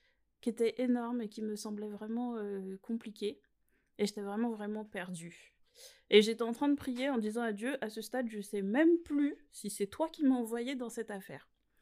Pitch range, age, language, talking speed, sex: 195-265 Hz, 30-49, French, 210 wpm, female